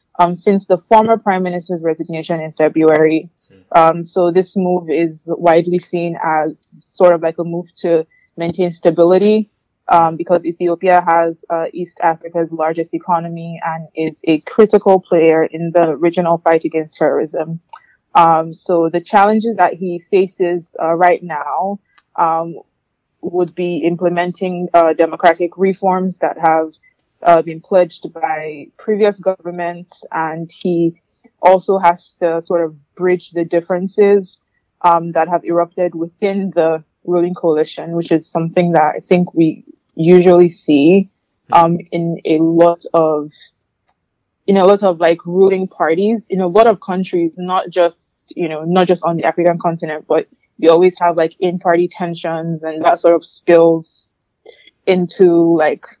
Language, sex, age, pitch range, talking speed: English, female, 20-39, 165-180 Hz, 150 wpm